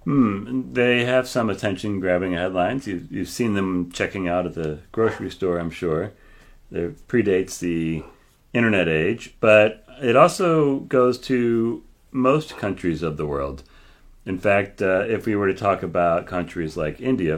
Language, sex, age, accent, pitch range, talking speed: English, male, 40-59, American, 80-100 Hz, 155 wpm